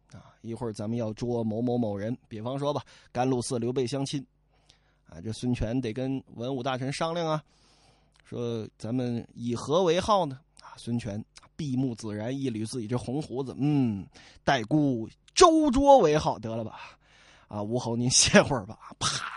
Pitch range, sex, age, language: 125-180 Hz, male, 20-39, Chinese